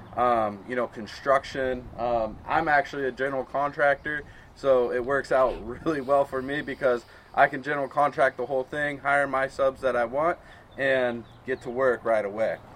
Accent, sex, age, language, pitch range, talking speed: American, male, 20-39, English, 125-150 Hz, 180 wpm